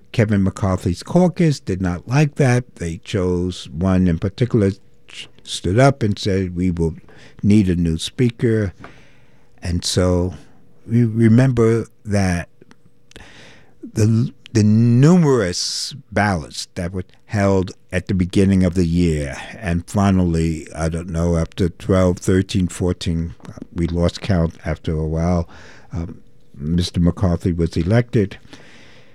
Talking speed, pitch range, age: 125 wpm, 90-120 Hz, 60-79